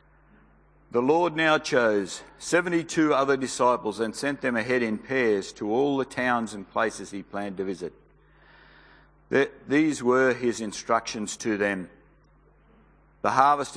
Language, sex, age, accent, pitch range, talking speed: English, male, 50-69, Australian, 115-155 Hz, 135 wpm